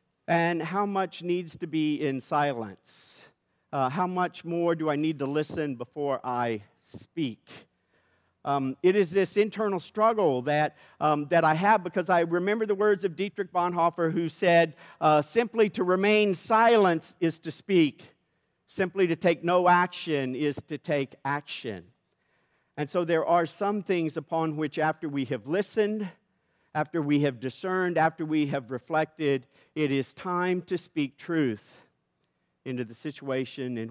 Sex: male